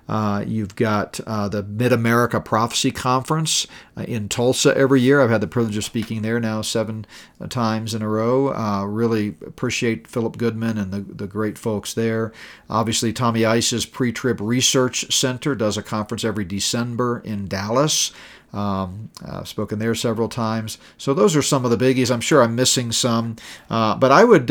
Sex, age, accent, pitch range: male, 40-59, American, 110-130 Hz